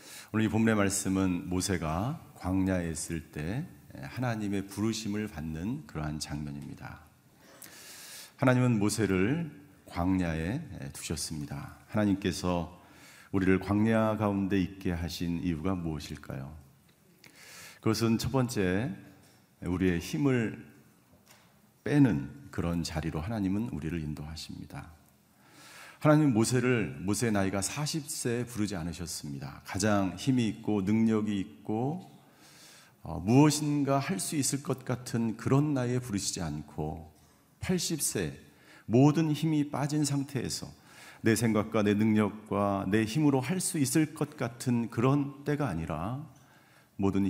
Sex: male